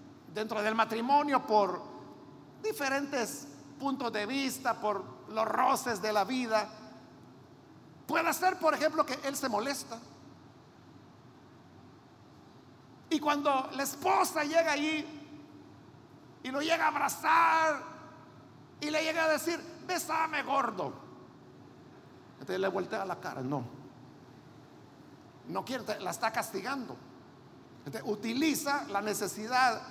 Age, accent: 50-69, Mexican